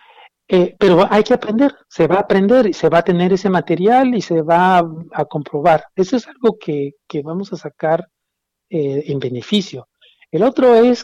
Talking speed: 195 wpm